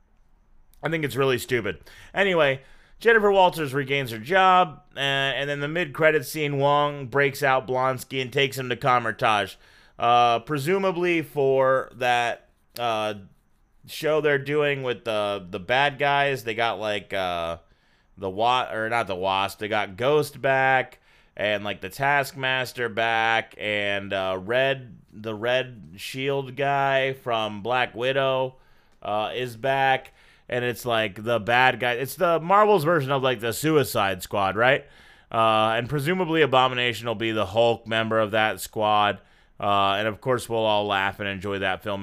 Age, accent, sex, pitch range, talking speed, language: 30-49, American, male, 115-160 Hz, 160 wpm, English